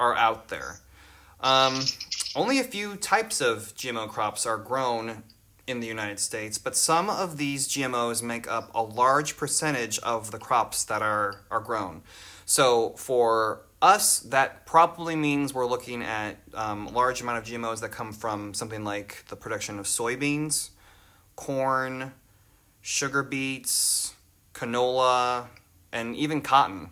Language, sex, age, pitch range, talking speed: English, male, 30-49, 105-130 Hz, 145 wpm